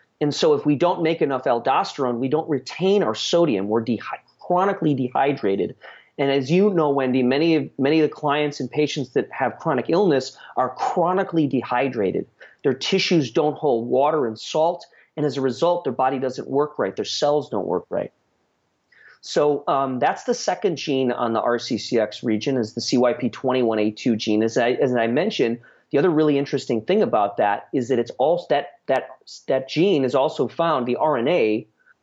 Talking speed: 180 wpm